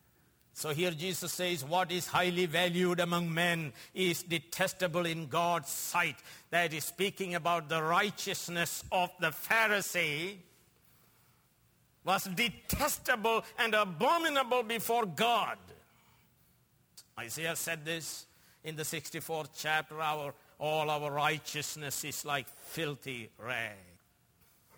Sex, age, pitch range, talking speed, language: male, 60-79, 155-185 Hz, 105 wpm, English